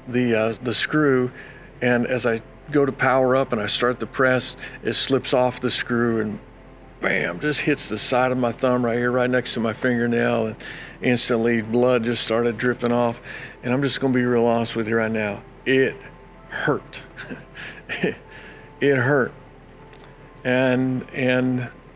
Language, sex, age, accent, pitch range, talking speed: English, male, 50-69, American, 120-135 Hz, 165 wpm